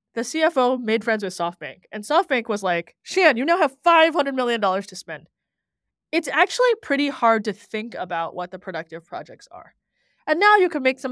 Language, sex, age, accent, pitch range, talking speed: English, female, 20-39, American, 195-270 Hz, 195 wpm